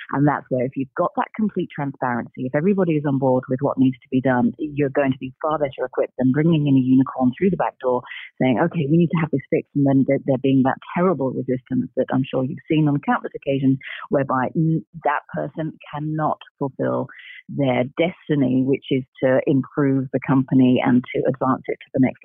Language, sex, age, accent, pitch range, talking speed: English, female, 40-59, British, 130-155 Hz, 215 wpm